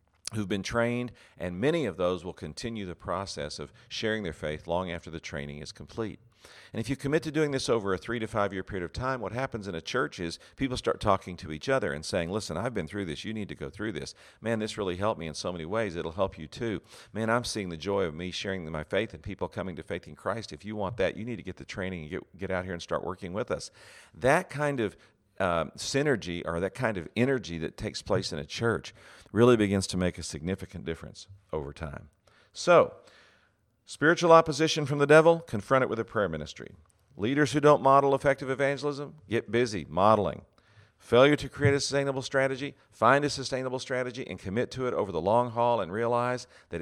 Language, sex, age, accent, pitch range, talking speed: English, male, 50-69, American, 90-125 Hz, 230 wpm